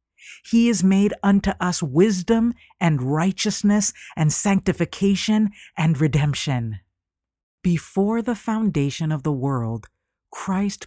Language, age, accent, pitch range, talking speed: English, 50-69, American, 135-180 Hz, 105 wpm